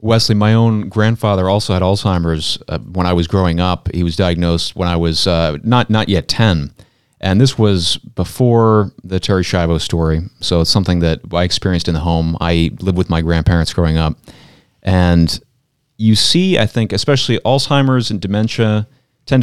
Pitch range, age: 95-125 Hz, 30-49